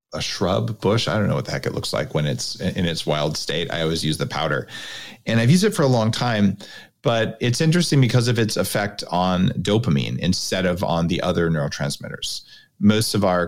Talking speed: 220 wpm